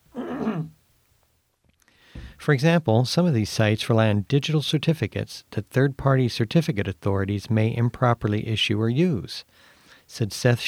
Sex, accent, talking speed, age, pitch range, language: male, American, 120 wpm, 50-69, 105-130 Hz, English